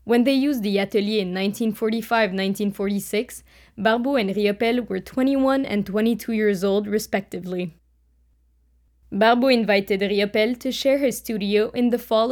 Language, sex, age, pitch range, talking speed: English, female, 20-39, 195-240 Hz, 135 wpm